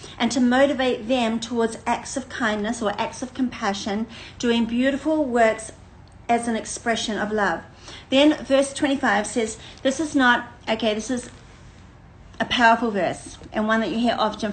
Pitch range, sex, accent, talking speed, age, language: 220-280 Hz, female, Australian, 160 wpm, 40-59, English